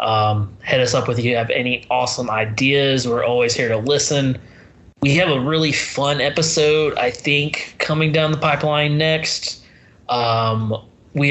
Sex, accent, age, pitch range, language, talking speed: male, American, 20-39, 120-145 Hz, English, 170 wpm